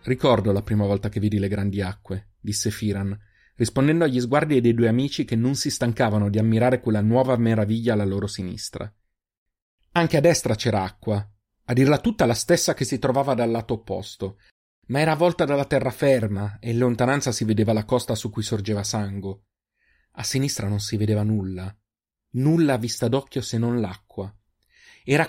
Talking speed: 180 wpm